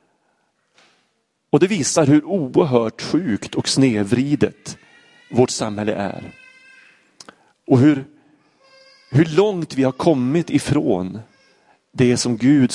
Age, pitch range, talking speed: 30-49, 105-145 Hz, 105 wpm